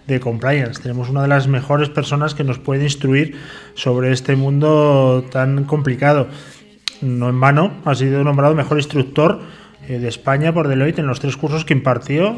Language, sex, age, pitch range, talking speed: Spanish, male, 20-39, 130-150 Hz, 170 wpm